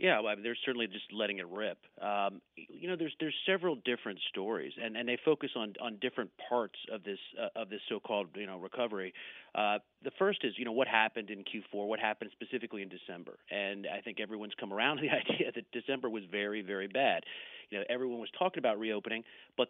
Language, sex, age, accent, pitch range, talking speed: English, male, 40-59, American, 105-135 Hz, 220 wpm